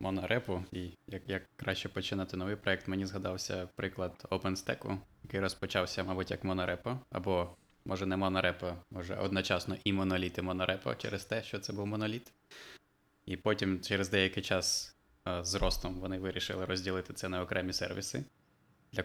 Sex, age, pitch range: male, 20-39, 95-100 Hz